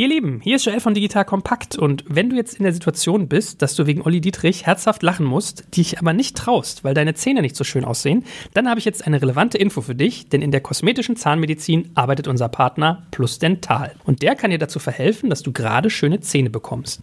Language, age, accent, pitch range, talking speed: German, 40-59, German, 140-200 Hz, 235 wpm